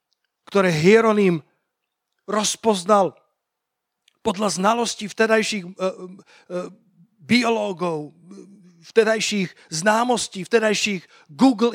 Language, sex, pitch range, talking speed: Slovak, male, 180-220 Hz, 65 wpm